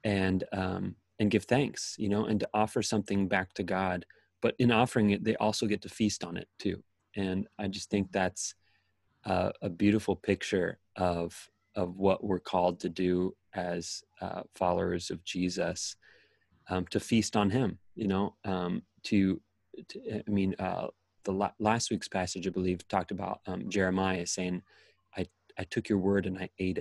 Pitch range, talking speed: 95-105 Hz, 175 wpm